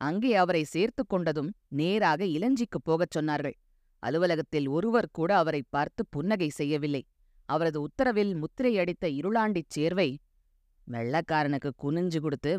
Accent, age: native, 20-39